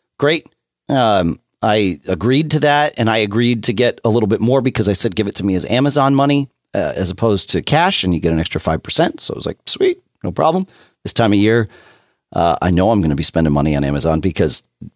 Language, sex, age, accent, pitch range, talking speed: English, male, 40-59, American, 85-140 Hz, 240 wpm